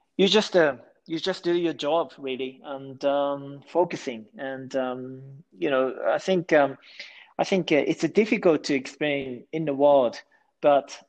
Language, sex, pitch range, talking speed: English, male, 130-155 Hz, 160 wpm